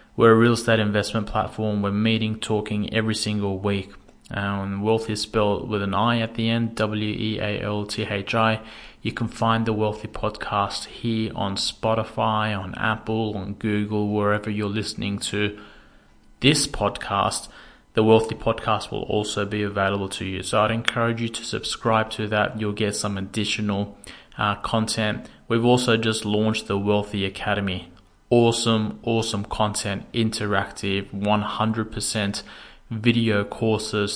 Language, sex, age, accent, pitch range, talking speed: English, male, 20-39, Australian, 100-110 Hz, 135 wpm